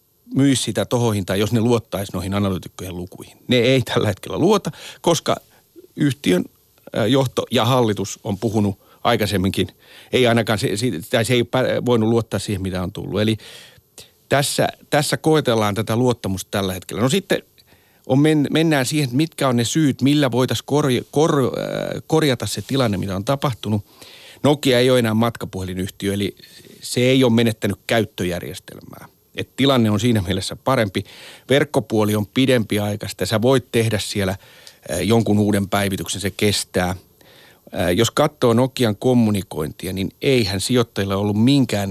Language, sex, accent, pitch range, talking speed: Finnish, male, native, 100-130 Hz, 145 wpm